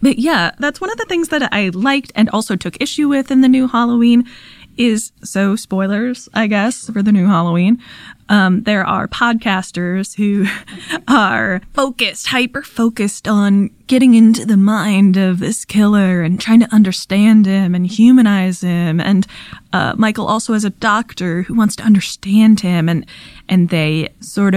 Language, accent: English, American